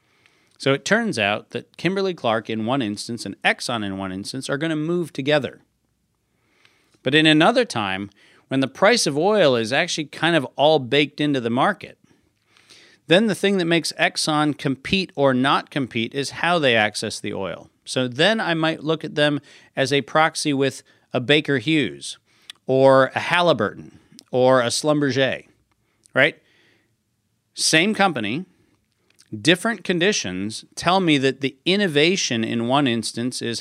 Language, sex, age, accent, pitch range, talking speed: English, male, 40-59, American, 125-160 Hz, 155 wpm